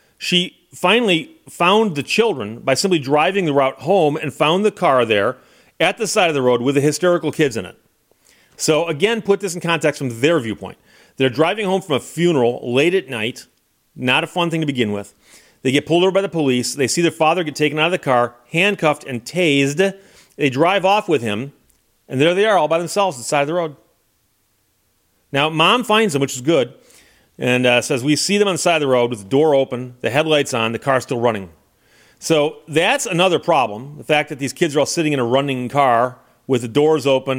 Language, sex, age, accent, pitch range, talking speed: English, male, 40-59, American, 125-170 Hz, 225 wpm